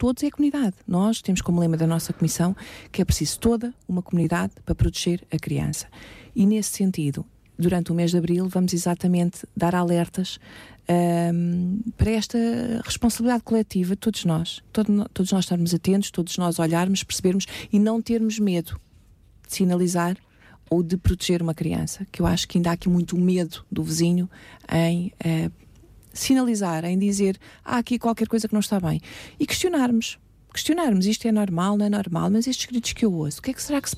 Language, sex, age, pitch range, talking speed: Portuguese, female, 40-59, 170-215 Hz, 185 wpm